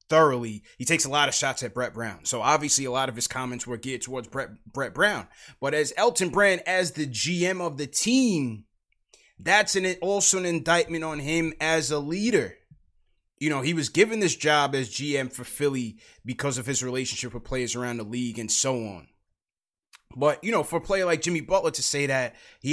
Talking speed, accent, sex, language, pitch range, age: 210 wpm, American, male, English, 125-160 Hz, 20-39